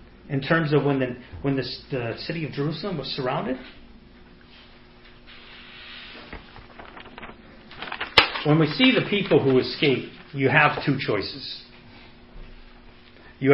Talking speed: 110 wpm